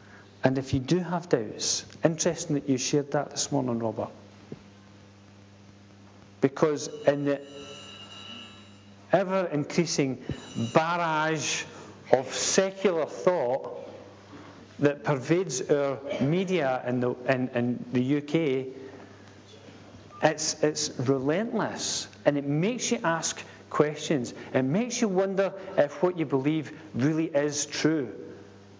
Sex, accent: male, British